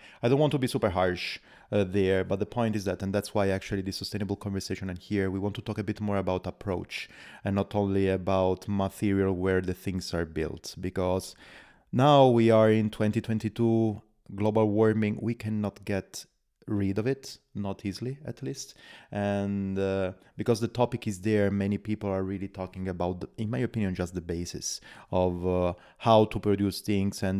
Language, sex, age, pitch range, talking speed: English, male, 30-49, 95-115 Hz, 190 wpm